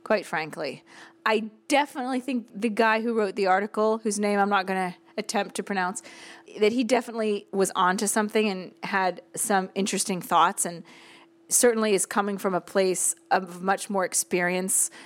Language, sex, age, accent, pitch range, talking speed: English, female, 30-49, American, 185-240 Hz, 165 wpm